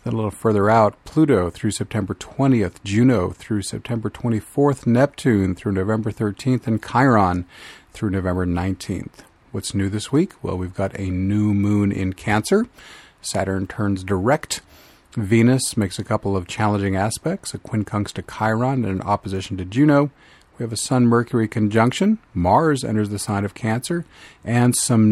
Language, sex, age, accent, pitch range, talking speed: English, male, 40-59, American, 95-120 Hz, 160 wpm